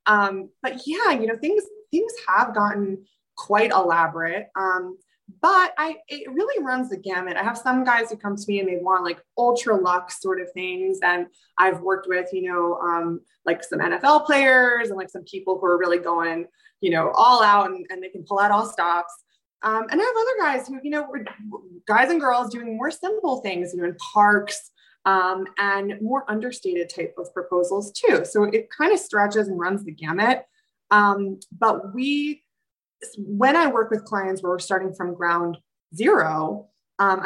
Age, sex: 20-39, female